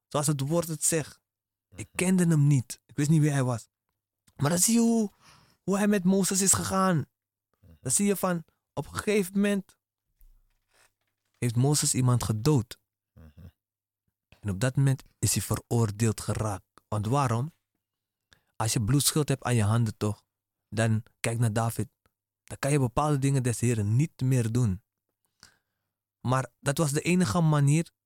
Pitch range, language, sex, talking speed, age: 105-165 Hz, Dutch, male, 165 wpm, 20-39